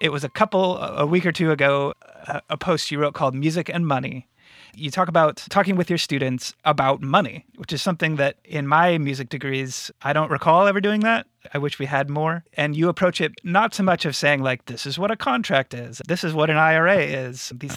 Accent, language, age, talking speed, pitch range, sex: American, English, 30-49, 230 wpm, 135-170 Hz, male